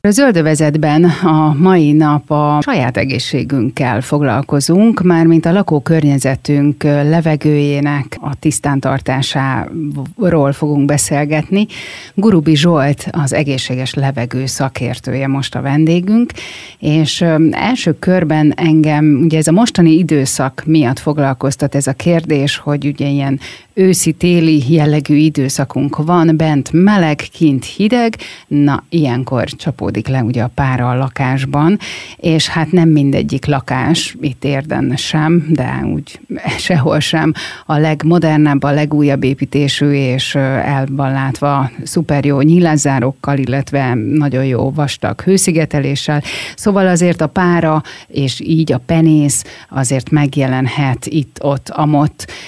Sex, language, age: female, Hungarian, 30-49